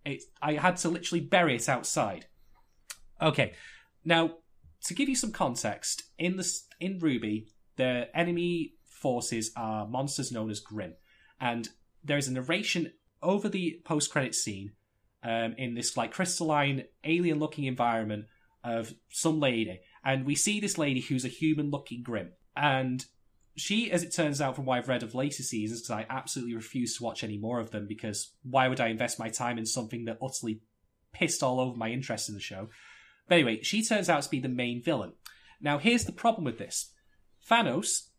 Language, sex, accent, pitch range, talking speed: English, male, British, 115-165 Hz, 185 wpm